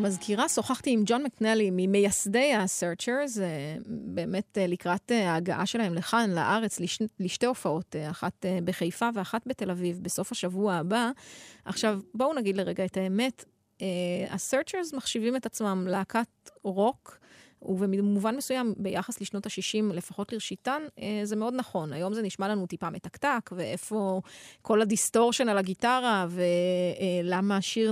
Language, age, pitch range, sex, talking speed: Hebrew, 30-49, 190-230 Hz, female, 125 wpm